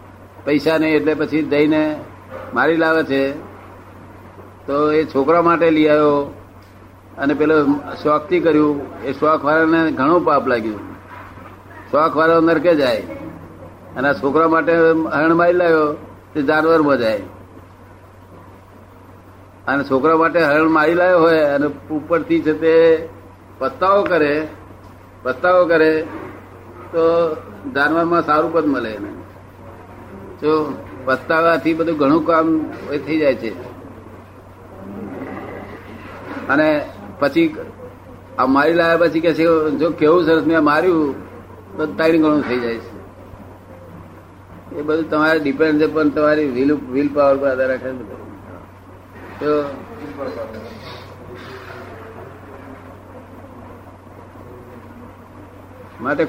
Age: 60-79